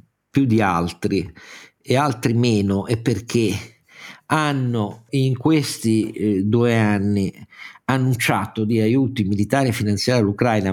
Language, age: Italian, 50-69